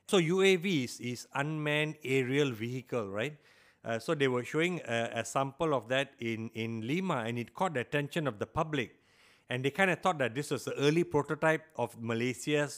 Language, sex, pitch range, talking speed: English, male, 125-165 Hz, 195 wpm